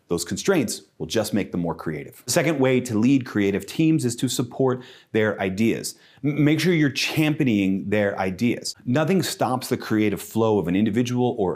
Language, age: English, 30-49